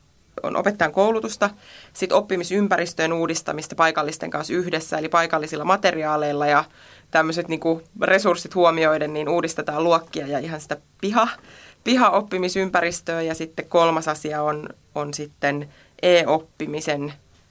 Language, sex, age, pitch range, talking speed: Finnish, female, 20-39, 155-175 Hz, 105 wpm